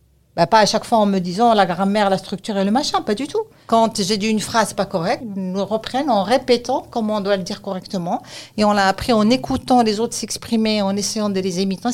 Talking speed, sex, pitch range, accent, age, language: 245 wpm, female, 195-250 Hz, French, 50-69, French